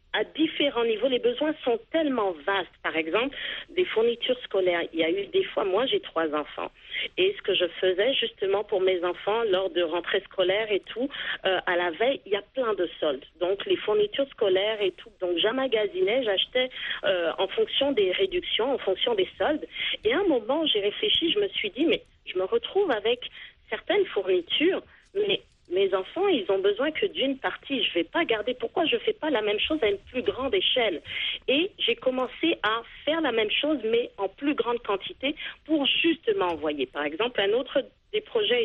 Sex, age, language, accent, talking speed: female, 40-59, French, French, 205 wpm